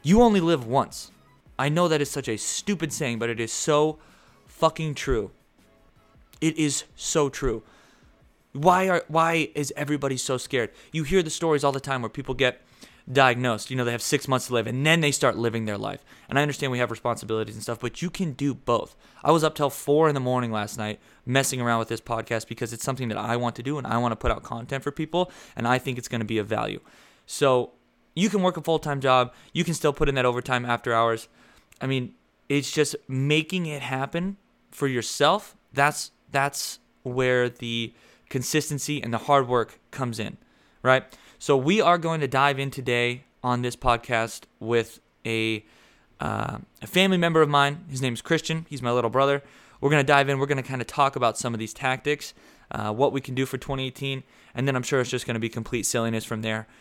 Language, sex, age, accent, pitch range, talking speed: English, male, 20-39, American, 115-145 Hz, 220 wpm